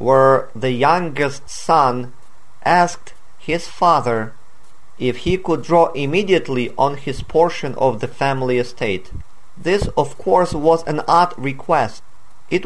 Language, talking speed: Ukrainian, 130 wpm